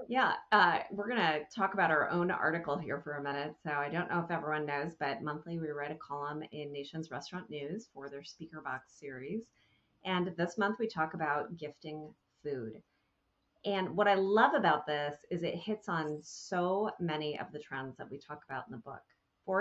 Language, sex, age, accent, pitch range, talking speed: English, female, 30-49, American, 145-190 Hz, 200 wpm